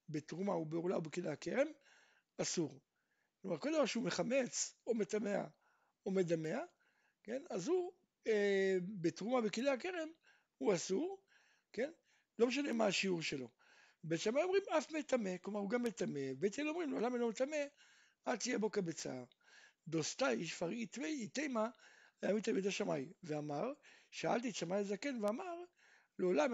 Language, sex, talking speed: Hebrew, male, 60 wpm